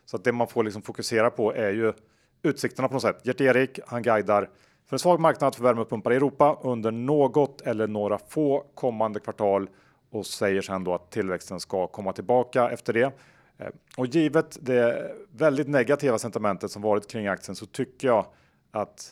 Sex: male